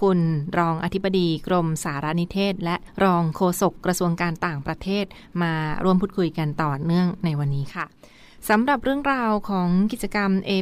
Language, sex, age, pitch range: Thai, female, 20-39, 170-200 Hz